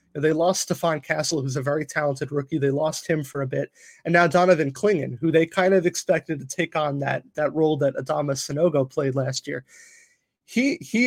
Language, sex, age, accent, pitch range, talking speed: English, male, 20-39, American, 145-180 Hz, 205 wpm